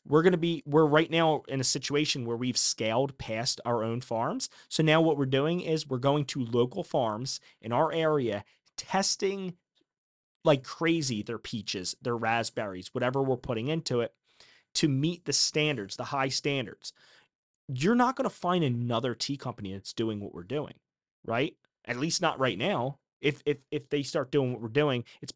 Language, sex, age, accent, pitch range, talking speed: English, male, 30-49, American, 115-145 Hz, 185 wpm